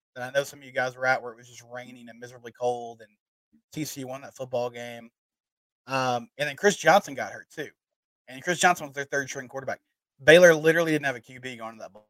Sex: male